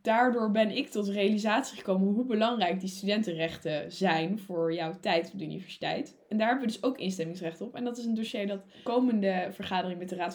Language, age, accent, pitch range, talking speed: Dutch, 10-29, Dutch, 195-245 Hz, 215 wpm